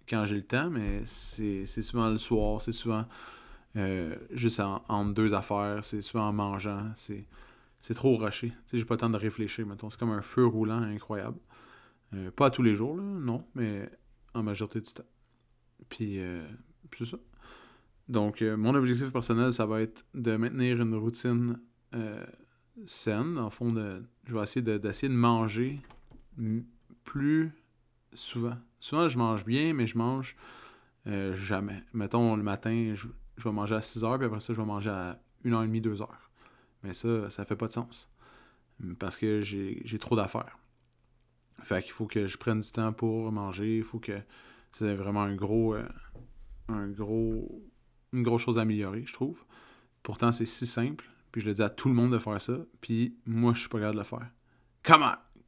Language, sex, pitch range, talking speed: French, male, 105-120 Hz, 190 wpm